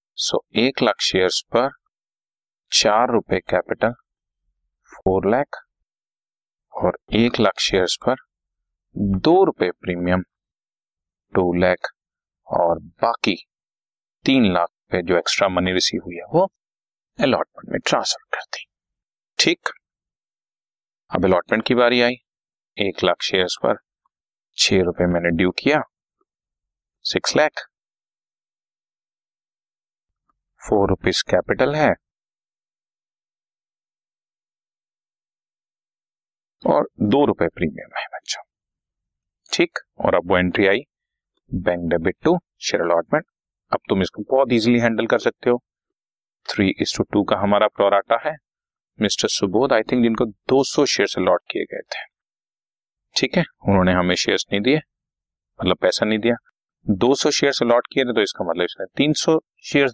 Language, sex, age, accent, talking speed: Hindi, male, 30-49, native, 125 wpm